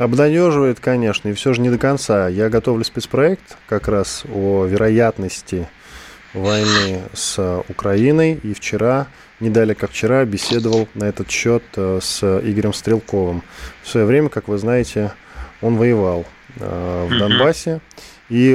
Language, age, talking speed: Russian, 20-39, 130 wpm